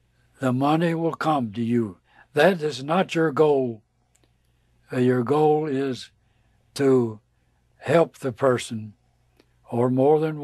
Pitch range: 110-155 Hz